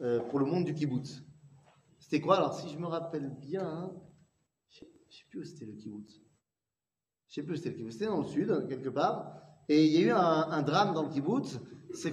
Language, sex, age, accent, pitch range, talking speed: French, male, 40-59, French, 150-205 Hz, 235 wpm